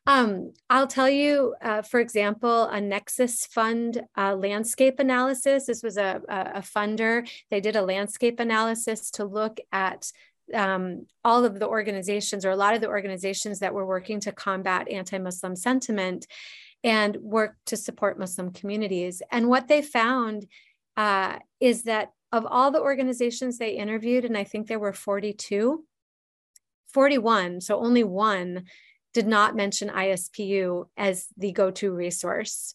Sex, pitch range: female, 195-235 Hz